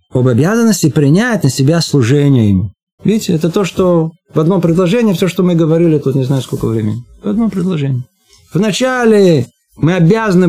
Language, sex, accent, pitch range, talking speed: Russian, male, native, 145-200 Hz, 165 wpm